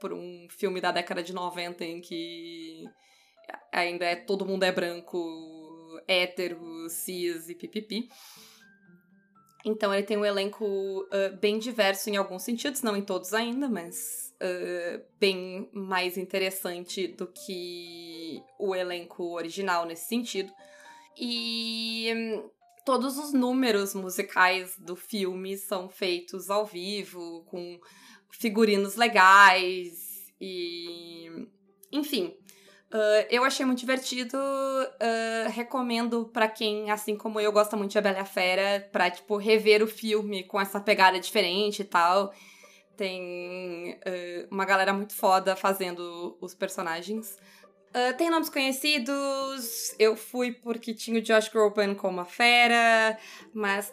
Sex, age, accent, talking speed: female, 20-39, Brazilian, 130 wpm